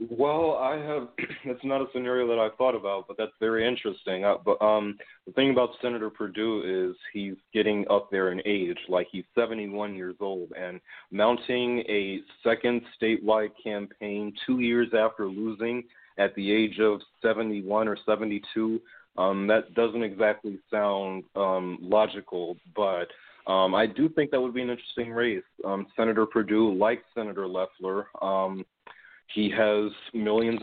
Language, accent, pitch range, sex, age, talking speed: English, American, 100-120 Hz, male, 30-49, 155 wpm